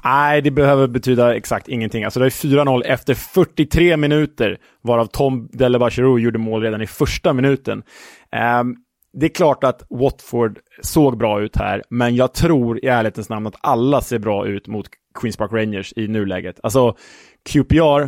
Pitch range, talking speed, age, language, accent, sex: 110-135 Hz, 170 wpm, 20-39, Swedish, Norwegian, male